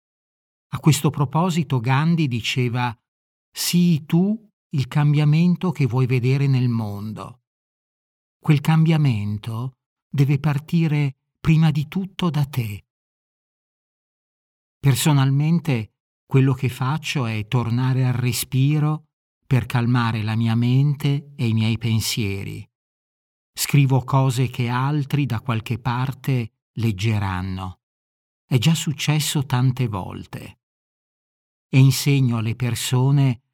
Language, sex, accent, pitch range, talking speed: Italian, male, native, 115-145 Hz, 100 wpm